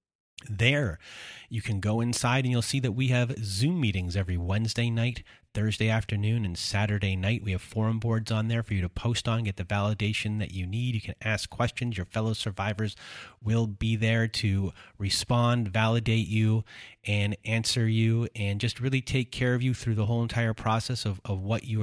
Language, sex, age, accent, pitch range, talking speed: English, male, 30-49, American, 105-120 Hz, 195 wpm